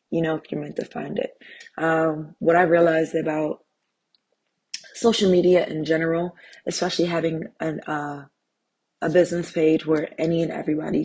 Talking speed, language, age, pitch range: 140 wpm, English, 20-39, 155-175 Hz